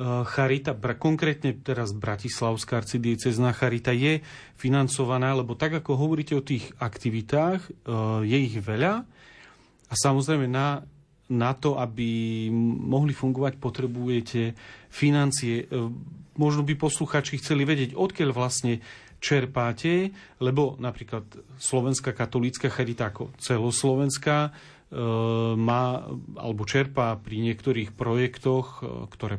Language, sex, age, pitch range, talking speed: Slovak, male, 40-59, 120-140 Hz, 100 wpm